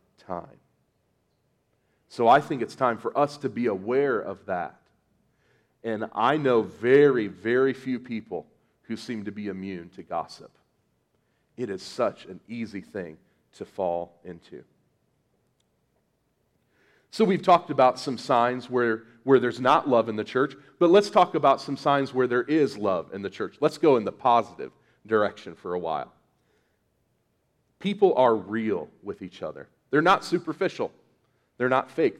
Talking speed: 155 wpm